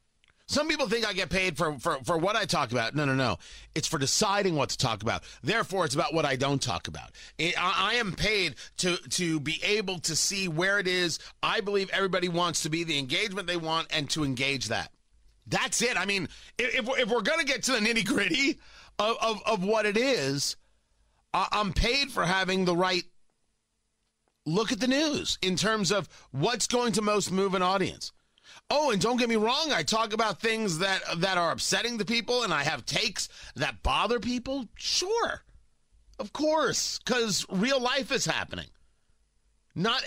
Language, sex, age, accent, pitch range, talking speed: English, male, 40-59, American, 140-225 Hz, 195 wpm